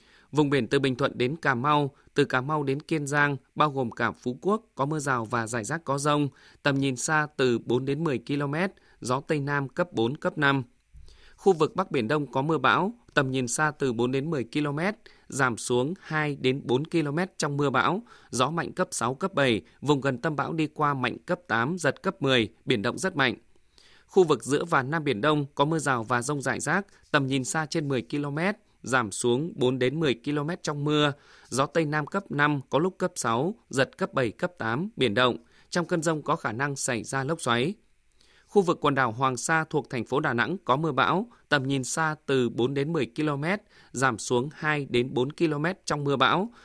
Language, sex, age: Vietnamese, male, 20-39